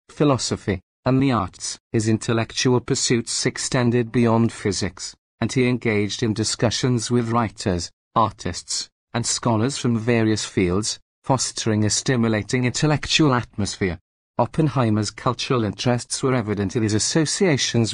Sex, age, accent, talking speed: male, 40-59, British, 120 wpm